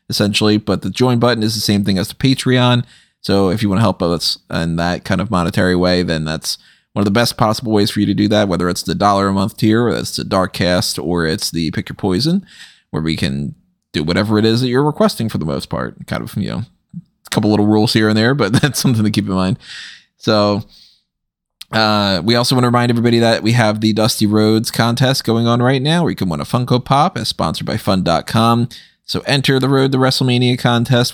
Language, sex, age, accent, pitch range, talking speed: English, male, 20-39, American, 95-125 Hz, 245 wpm